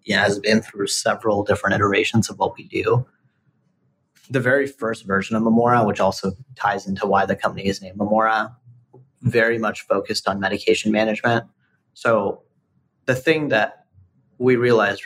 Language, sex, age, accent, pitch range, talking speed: English, male, 30-49, American, 105-120 Hz, 155 wpm